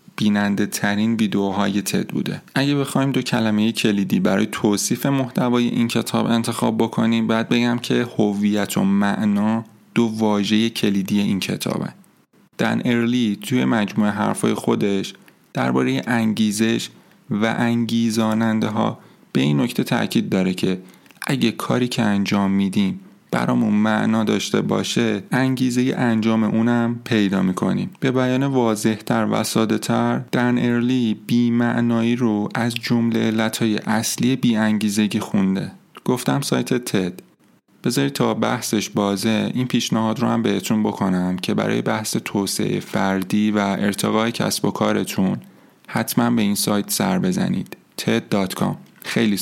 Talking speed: 130 wpm